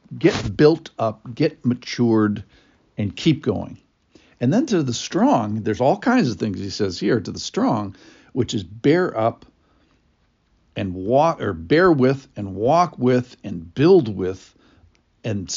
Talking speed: 155 wpm